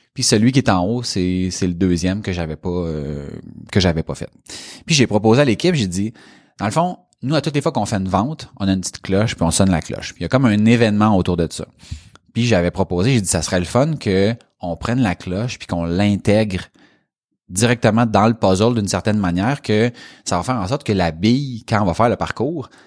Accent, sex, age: Canadian, male, 30-49